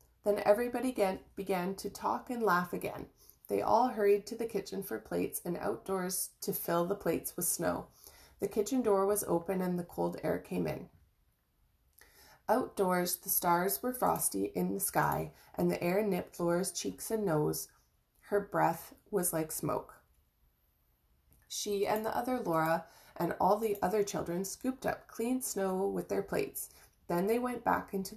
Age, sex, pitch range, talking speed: 20-39, female, 160-205 Hz, 165 wpm